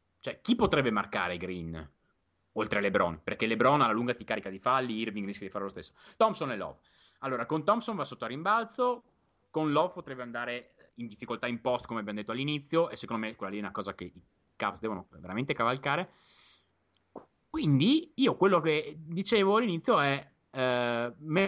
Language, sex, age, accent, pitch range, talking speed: Italian, male, 30-49, native, 110-155 Hz, 185 wpm